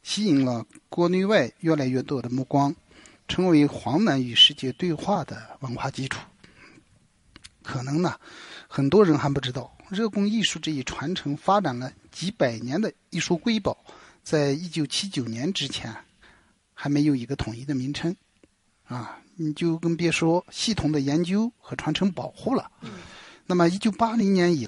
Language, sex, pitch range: Chinese, male, 135-180 Hz